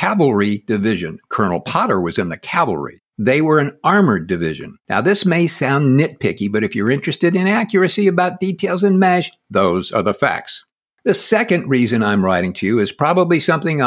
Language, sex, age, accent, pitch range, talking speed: English, male, 60-79, American, 130-190 Hz, 180 wpm